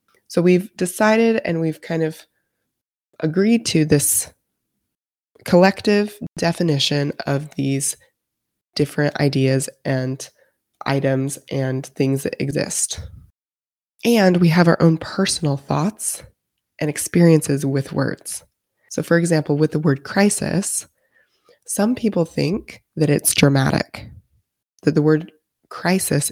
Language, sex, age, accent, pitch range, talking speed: English, female, 20-39, American, 145-180 Hz, 115 wpm